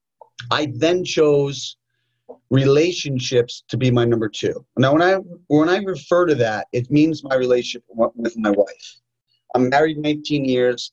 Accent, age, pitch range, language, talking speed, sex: American, 30-49, 120-145 Hz, English, 155 wpm, male